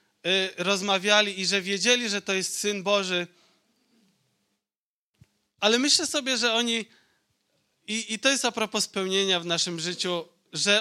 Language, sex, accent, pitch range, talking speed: Polish, male, native, 170-205 Hz, 140 wpm